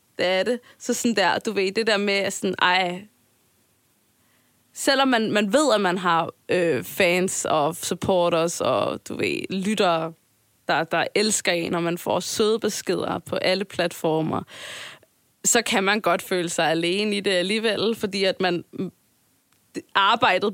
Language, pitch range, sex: Danish, 180-225 Hz, female